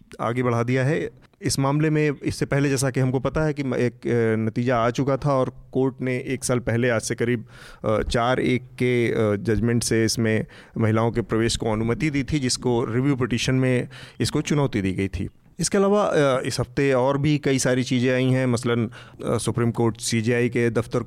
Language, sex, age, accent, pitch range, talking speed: Hindi, male, 30-49, native, 120-140 Hz, 195 wpm